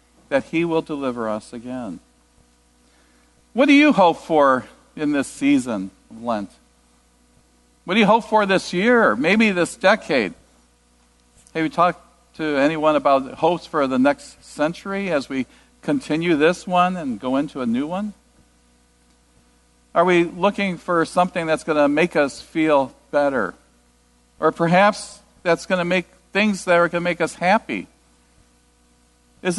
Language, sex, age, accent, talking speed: English, male, 50-69, American, 150 wpm